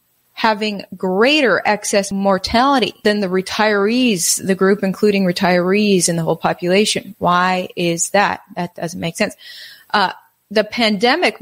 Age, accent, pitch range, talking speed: 30-49, American, 175-215 Hz, 135 wpm